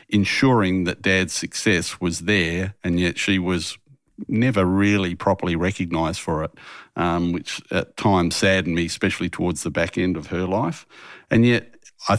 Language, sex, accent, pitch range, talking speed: English, male, Australian, 95-110 Hz, 165 wpm